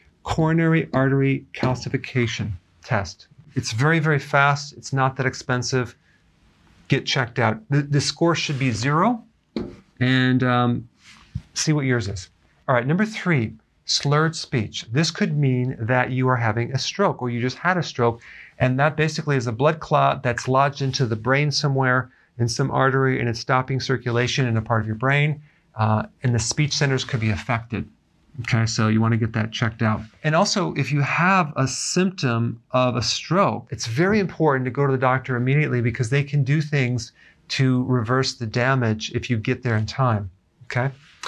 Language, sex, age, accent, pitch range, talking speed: English, male, 40-59, American, 120-145 Hz, 185 wpm